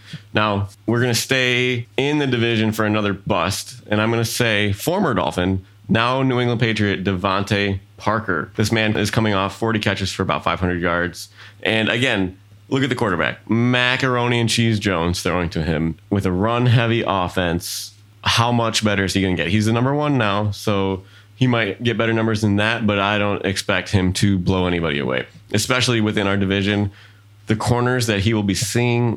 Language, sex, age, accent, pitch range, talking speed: English, male, 20-39, American, 95-110 Hz, 195 wpm